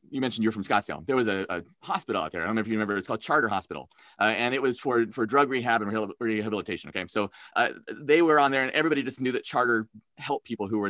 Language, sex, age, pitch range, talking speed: English, male, 30-49, 110-180 Hz, 270 wpm